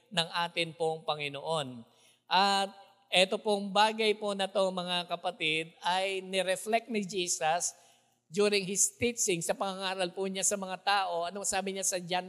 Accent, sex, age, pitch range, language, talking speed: Filipino, male, 50-69, 165-205 Hz, English, 155 wpm